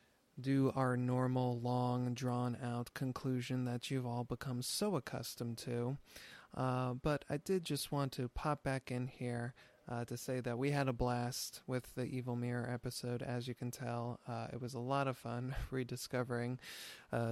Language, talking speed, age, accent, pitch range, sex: English, 175 wpm, 20-39, American, 120-135 Hz, male